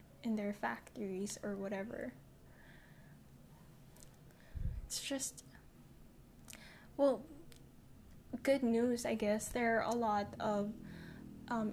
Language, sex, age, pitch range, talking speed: Filipino, female, 10-29, 205-240 Hz, 90 wpm